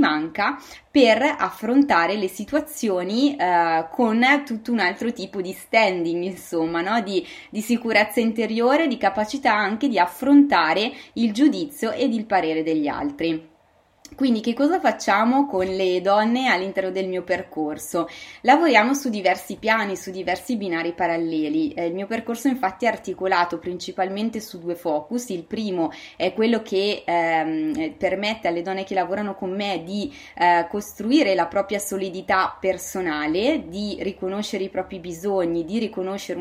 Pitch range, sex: 175-240 Hz, female